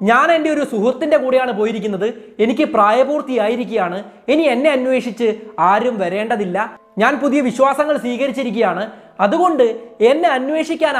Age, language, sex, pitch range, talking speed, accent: 20-39, Malayalam, male, 205-280 Hz, 115 wpm, native